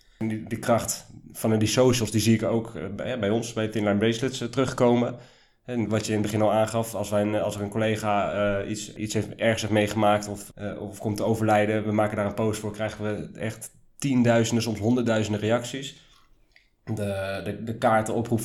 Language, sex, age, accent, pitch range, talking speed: Dutch, male, 20-39, Dutch, 105-115 Hz, 210 wpm